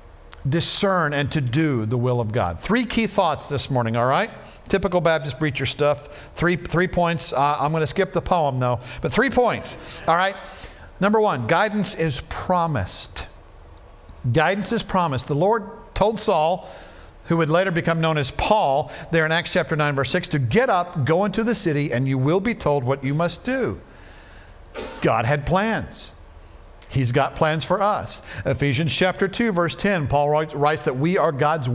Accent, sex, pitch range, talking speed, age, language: American, male, 135-190 Hz, 180 wpm, 50-69, English